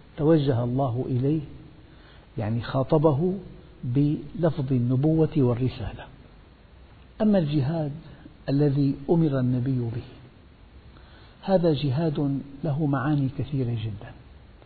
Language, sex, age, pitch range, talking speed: Arabic, male, 60-79, 125-150 Hz, 80 wpm